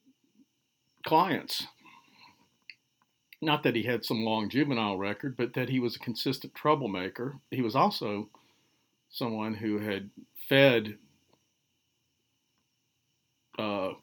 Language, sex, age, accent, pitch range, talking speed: English, male, 50-69, American, 110-130 Hz, 105 wpm